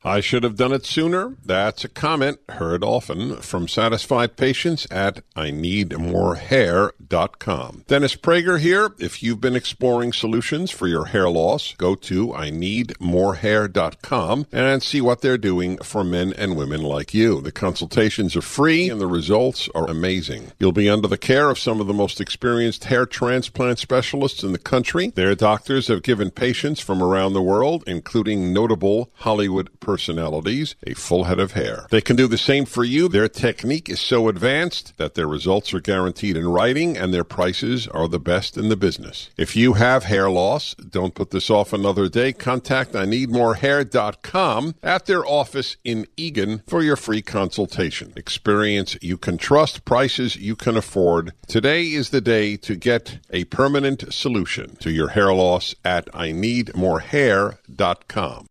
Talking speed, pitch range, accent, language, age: 165 wpm, 95-130 Hz, American, English, 50-69